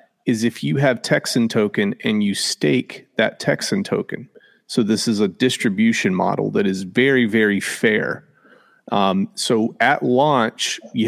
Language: English